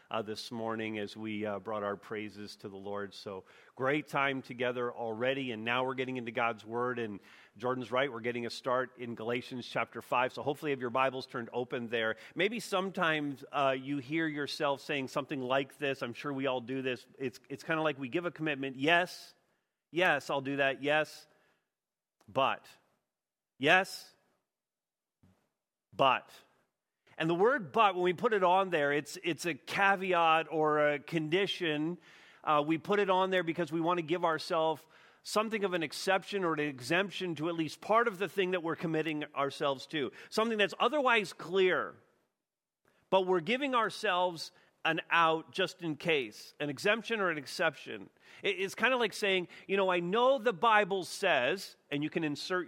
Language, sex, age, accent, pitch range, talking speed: English, male, 40-59, American, 130-185 Hz, 185 wpm